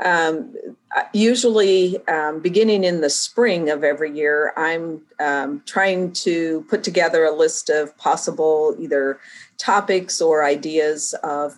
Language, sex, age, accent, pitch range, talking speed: English, female, 50-69, American, 150-190 Hz, 130 wpm